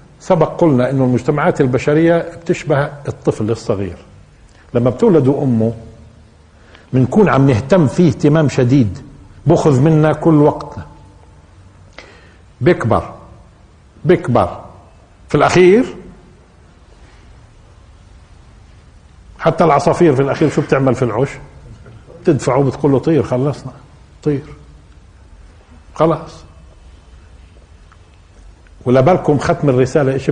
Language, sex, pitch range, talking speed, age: Arabic, male, 100-150 Hz, 85 wpm, 50-69